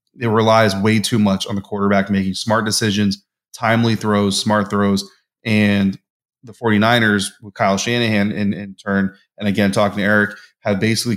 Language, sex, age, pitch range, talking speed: English, male, 20-39, 100-110 Hz, 165 wpm